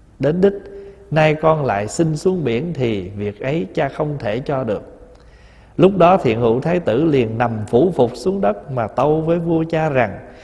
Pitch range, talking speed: 110-175 Hz, 195 wpm